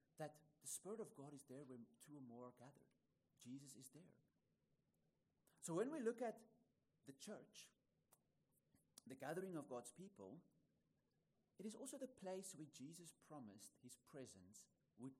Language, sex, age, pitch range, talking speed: English, male, 30-49, 140-215 Hz, 155 wpm